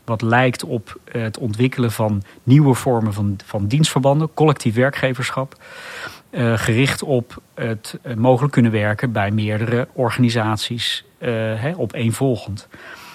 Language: Dutch